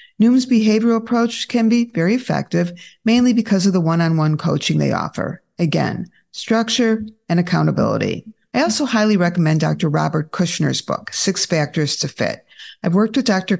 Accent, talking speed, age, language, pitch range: American, 155 wpm, 50-69, English, 160-210 Hz